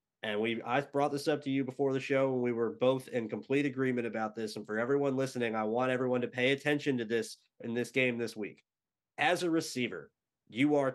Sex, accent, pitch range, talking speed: male, American, 120-145 Hz, 225 wpm